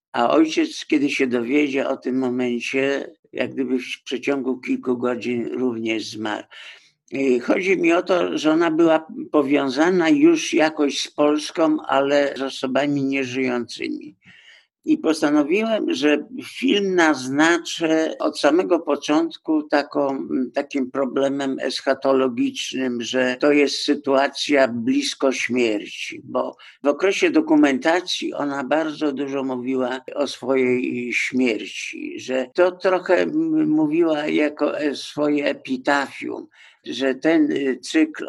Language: Polish